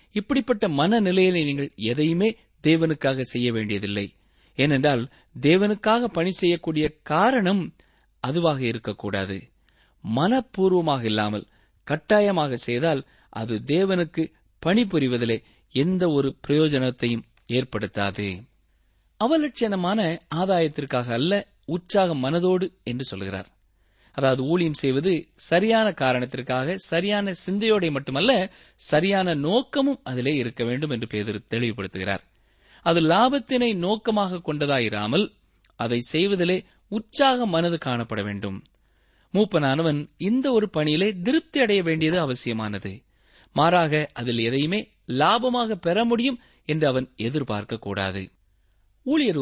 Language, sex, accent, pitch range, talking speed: Tamil, male, native, 115-185 Hz, 90 wpm